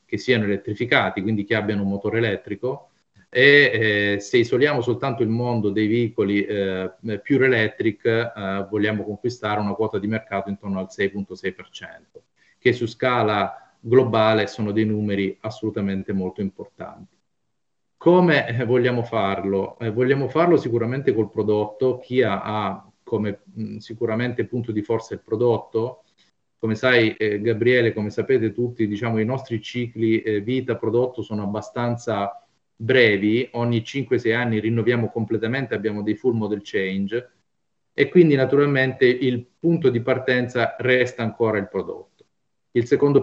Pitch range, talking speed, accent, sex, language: 105-125 Hz, 135 wpm, native, male, Italian